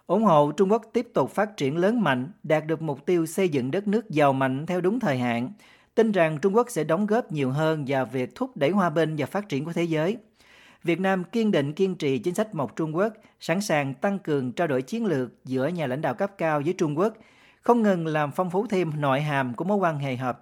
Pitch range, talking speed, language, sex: 140-195 Hz, 255 wpm, Vietnamese, male